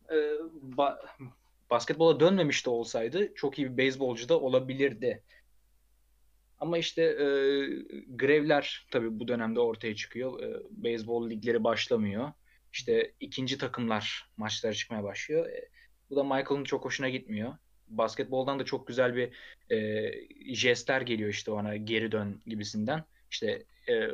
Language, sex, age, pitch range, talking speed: Turkish, male, 20-39, 110-140 Hz, 130 wpm